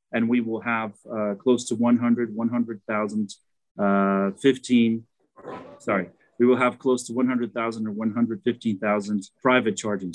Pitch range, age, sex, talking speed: 115-140 Hz, 30-49, male, 130 wpm